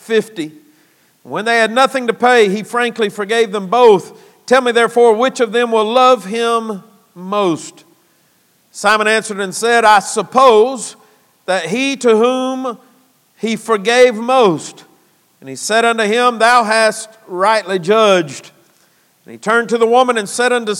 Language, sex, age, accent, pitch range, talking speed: English, male, 50-69, American, 195-240 Hz, 155 wpm